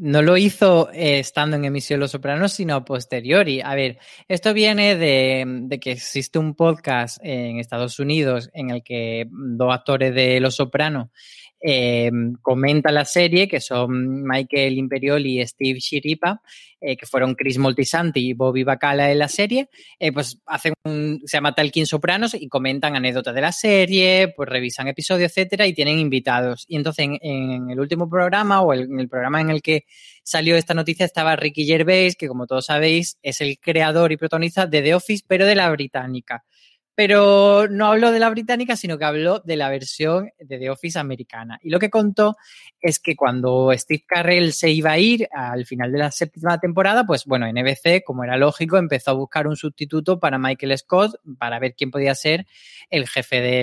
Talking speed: 190 wpm